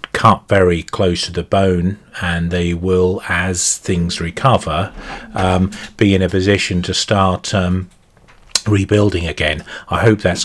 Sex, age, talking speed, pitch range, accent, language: male, 40-59, 145 wpm, 90-100 Hz, British, English